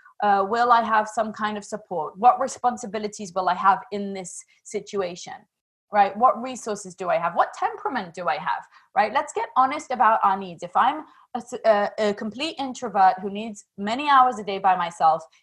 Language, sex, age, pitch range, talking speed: English, female, 20-39, 185-245 Hz, 190 wpm